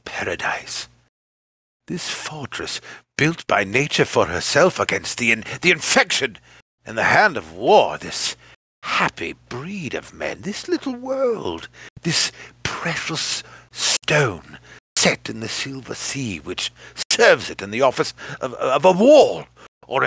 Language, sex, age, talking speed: English, male, 60-79, 135 wpm